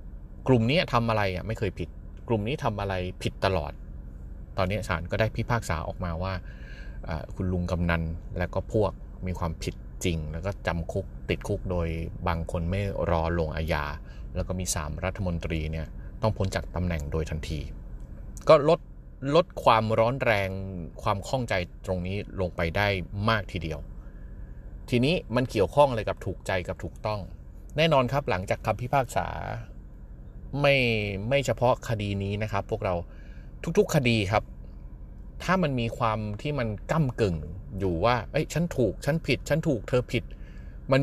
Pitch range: 75-115 Hz